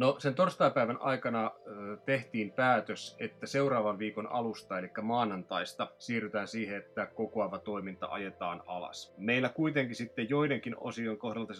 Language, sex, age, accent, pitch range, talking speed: Finnish, male, 30-49, native, 105-115 Hz, 130 wpm